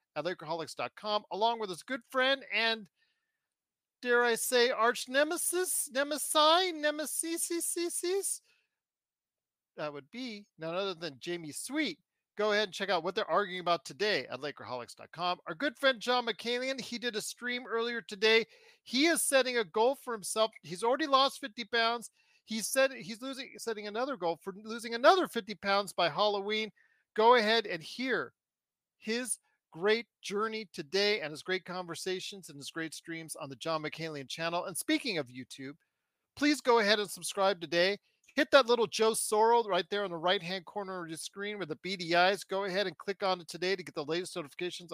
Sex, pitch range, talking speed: male, 180-250 Hz, 180 wpm